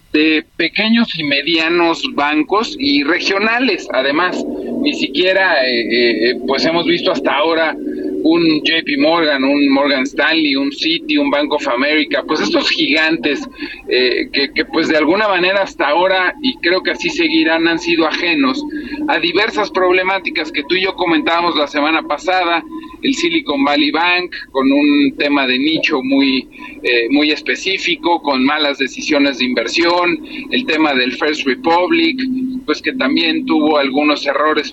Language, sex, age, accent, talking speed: Spanish, male, 40-59, Mexican, 155 wpm